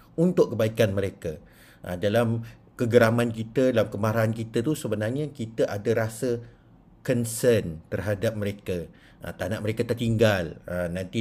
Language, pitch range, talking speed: Malay, 100-120 Hz, 120 wpm